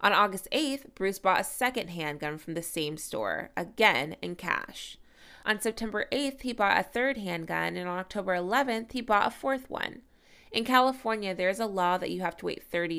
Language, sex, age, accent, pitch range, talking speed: English, female, 20-39, American, 170-230 Hz, 205 wpm